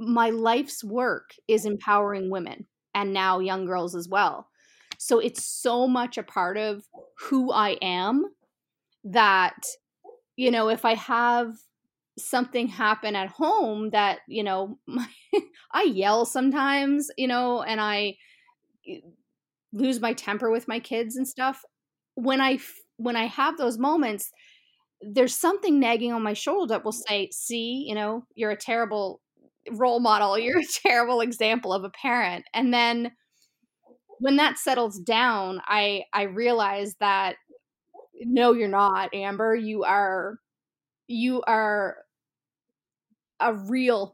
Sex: female